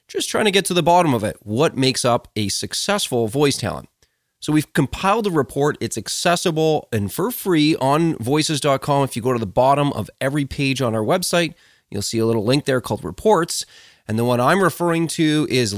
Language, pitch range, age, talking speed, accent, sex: English, 120-170 Hz, 30-49, 210 wpm, American, male